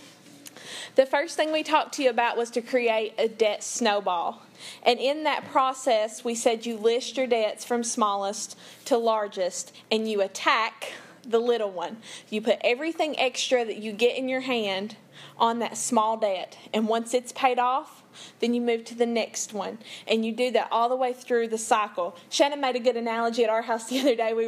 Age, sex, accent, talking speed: 20-39, female, American, 200 wpm